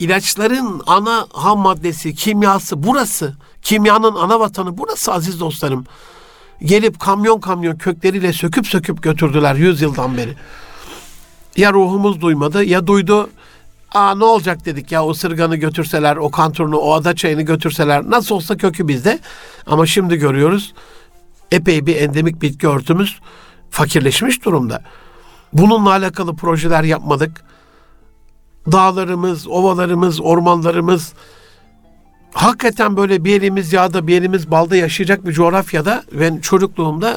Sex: male